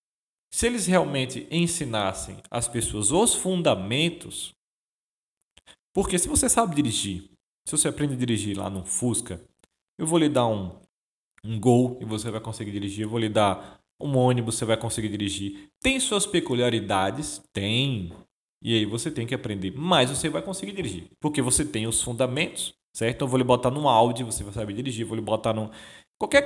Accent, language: Brazilian, Portuguese